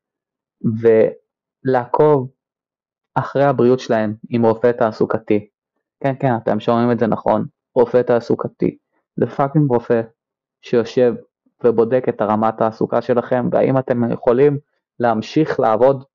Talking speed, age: 110 wpm, 20-39